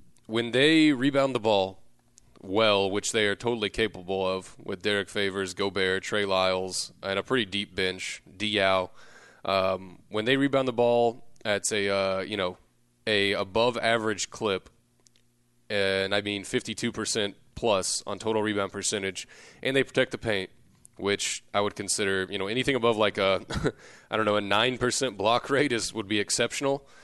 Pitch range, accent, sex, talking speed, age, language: 95-115 Hz, American, male, 170 wpm, 20-39, English